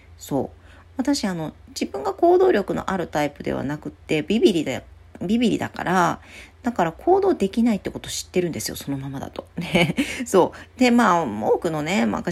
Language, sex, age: Japanese, female, 40-59